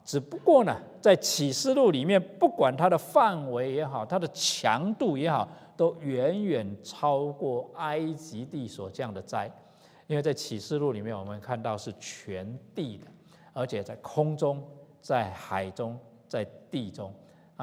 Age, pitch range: 50-69, 110-165 Hz